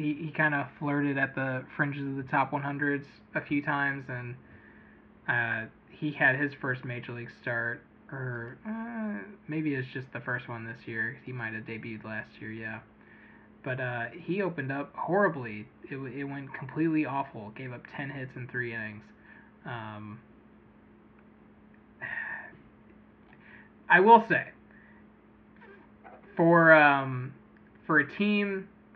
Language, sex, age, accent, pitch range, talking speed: English, male, 20-39, American, 120-155 Hz, 140 wpm